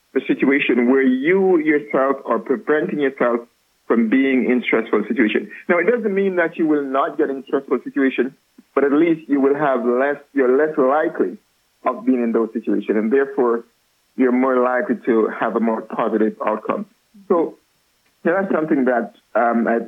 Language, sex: English, male